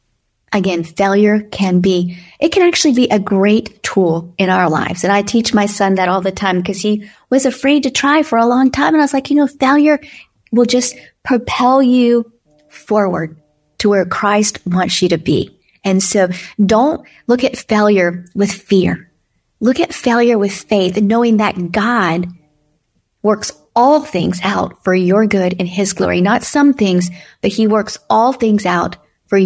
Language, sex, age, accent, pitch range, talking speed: English, female, 40-59, American, 185-240 Hz, 180 wpm